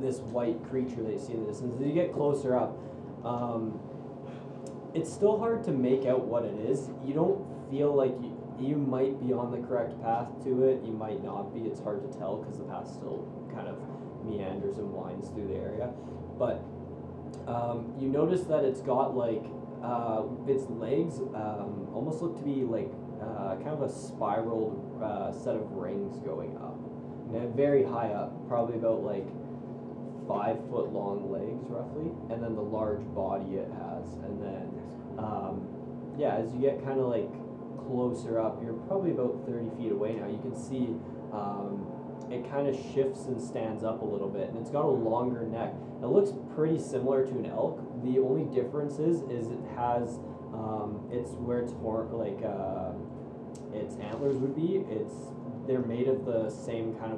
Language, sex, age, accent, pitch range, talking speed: English, male, 20-39, American, 115-135 Hz, 185 wpm